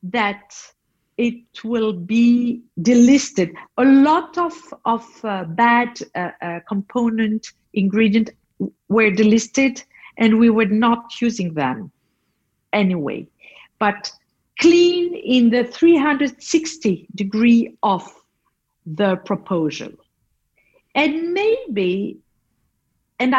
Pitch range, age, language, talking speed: 205-275 Hz, 50-69, English, 90 wpm